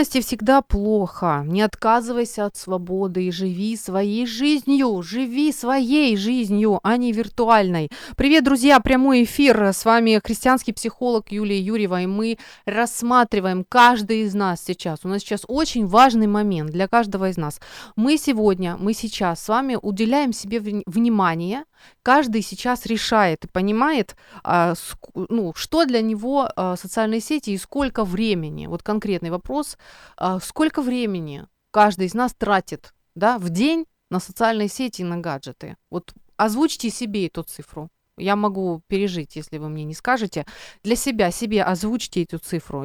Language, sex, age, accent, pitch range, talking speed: Ukrainian, female, 30-49, native, 185-240 Hz, 140 wpm